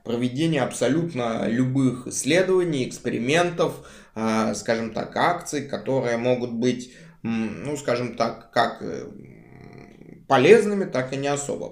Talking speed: 100 wpm